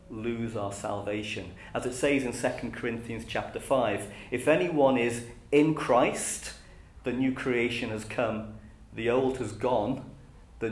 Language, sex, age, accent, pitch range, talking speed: English, male, 40-59, British, 110-140 Hz, 145 wpm